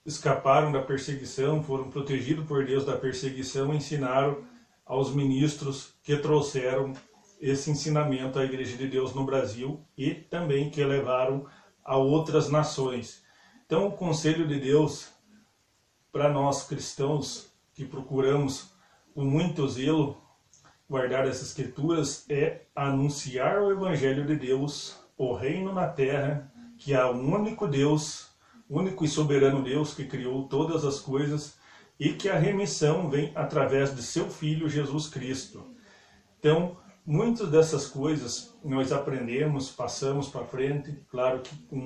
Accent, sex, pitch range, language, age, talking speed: Brazilian, male, 135-150 Hz, Portuguese, 40-59, 130 wpm